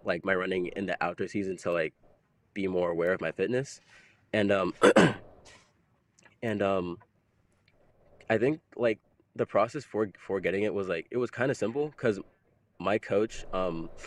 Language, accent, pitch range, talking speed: English, American, 95-115 Hz, 165 wpm